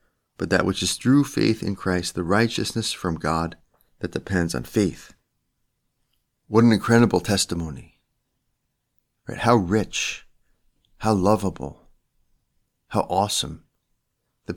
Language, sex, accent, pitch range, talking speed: English, male, American, 90-110 Hz, 110 wpm